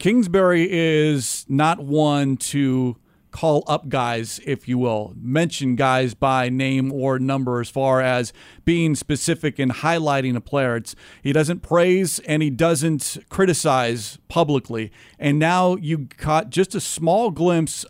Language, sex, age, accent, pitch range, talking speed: English, male, 40-59, American, 135-165 Hz, 140 wpm